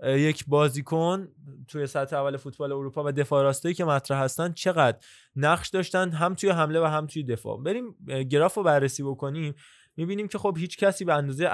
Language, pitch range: Persian, 135-160 Hz